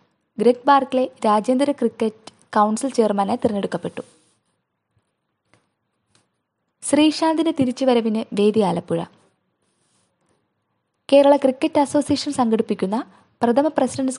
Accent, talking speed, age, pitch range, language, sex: native, 70 wpm, 20-39, 220-270 Hz, Malayalam, female